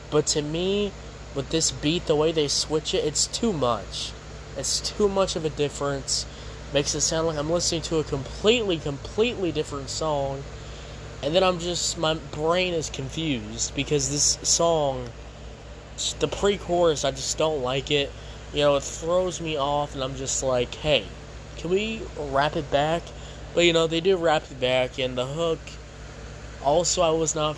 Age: 20-39